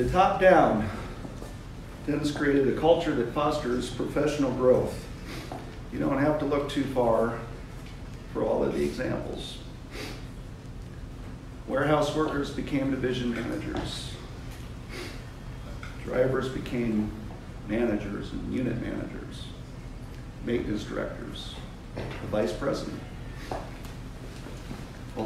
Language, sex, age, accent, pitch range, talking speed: English, male, 50-69, American, 115-140 Hz, 95 wpm